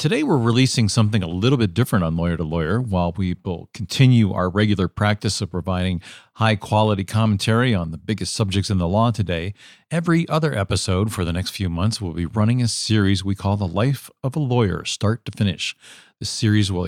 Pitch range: 95-125 Hz